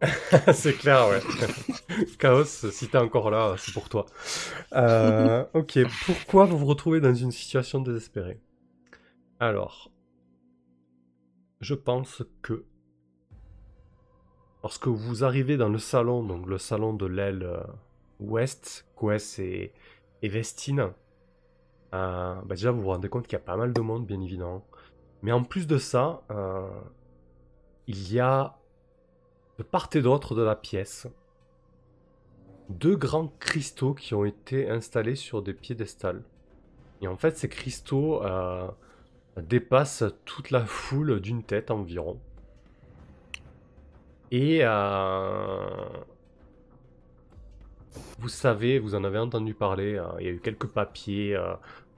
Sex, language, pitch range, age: male, French, 95-130 Hz, 20-39